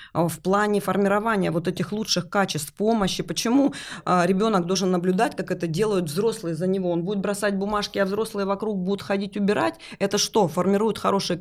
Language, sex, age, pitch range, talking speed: Russian, female, 20-39, 170-205 Hz, 170 wpm